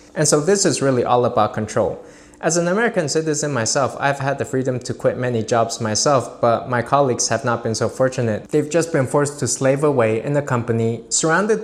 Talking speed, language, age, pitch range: 210 wpm, English, 20-39, 120-145 Hz